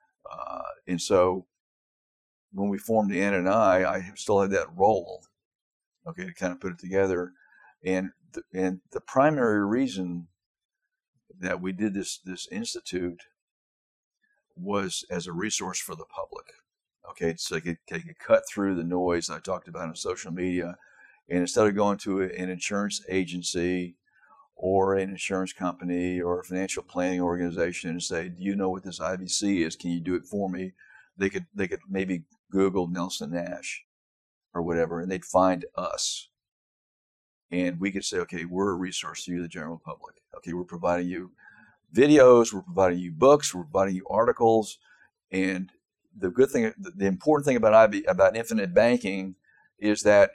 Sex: male